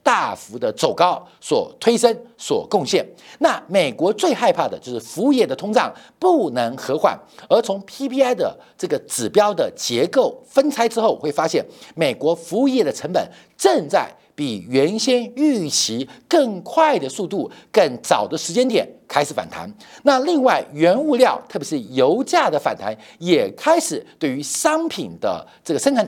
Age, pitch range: 50-69, 200-295 Hz